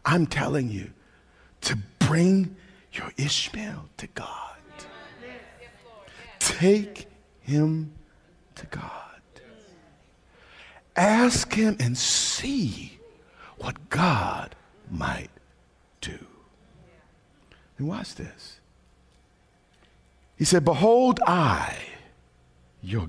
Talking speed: 75 wpm